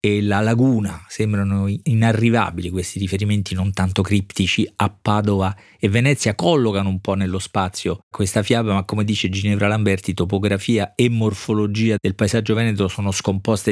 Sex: male